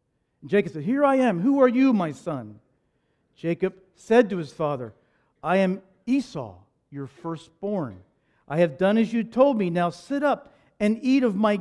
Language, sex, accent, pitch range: English, male, American, 180-250 Hz